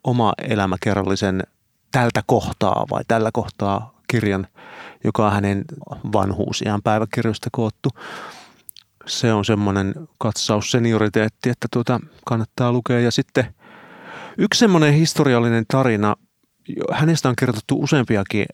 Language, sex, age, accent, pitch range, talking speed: Finnish, male, 30-49, native, 105-120 Hz, 105 wpm